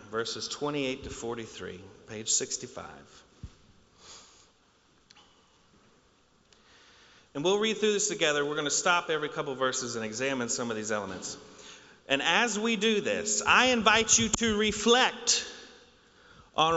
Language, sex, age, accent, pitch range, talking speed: English, male, 40-59, American, 125-205 Hz, 130 wpm